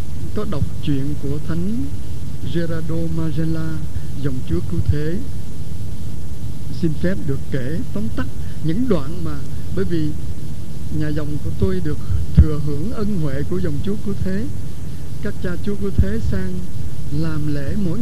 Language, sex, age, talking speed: Vietnamese, male, 60-79, 150 wpm